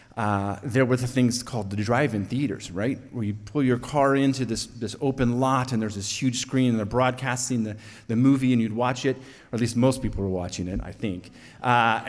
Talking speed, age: 230 wpm, 30-49